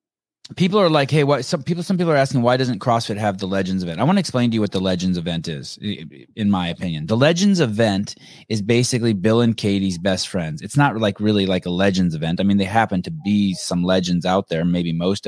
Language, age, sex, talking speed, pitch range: English, 20-39, male, 245 wpm, 100-125 Hz